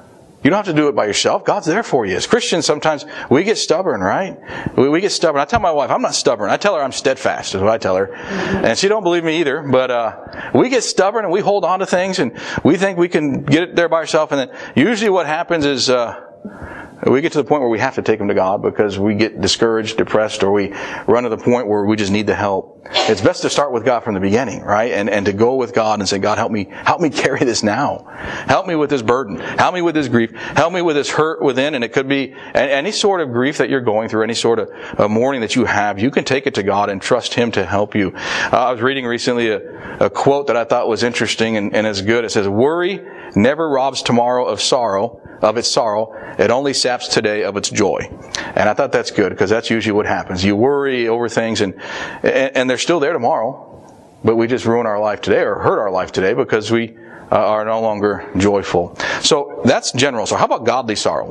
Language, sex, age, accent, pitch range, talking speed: English, male, 40-59, American, 110-145 Hz, 255 wpm